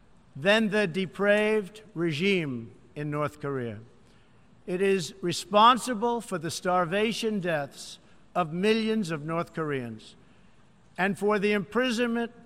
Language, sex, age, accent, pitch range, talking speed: English, male, 60-79, American, 170-220 Hz, 110 wpm